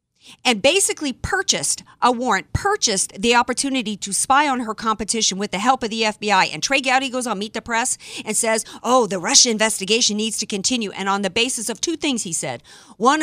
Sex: female